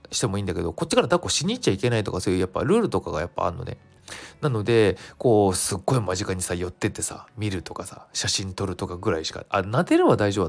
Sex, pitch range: male, 95-155 Hz